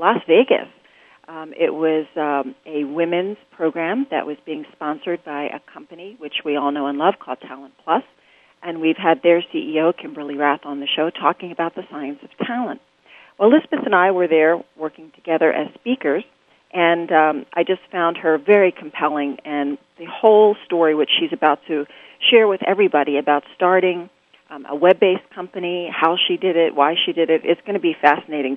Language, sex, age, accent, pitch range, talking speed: English, female, 40-59, American, 150-180 Hz, 185 wpm